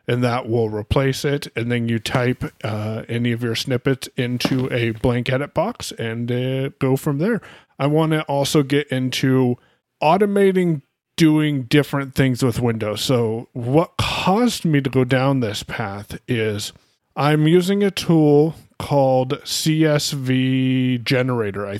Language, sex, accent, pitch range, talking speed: English, male, American, 120-150 Hz, 145 wpm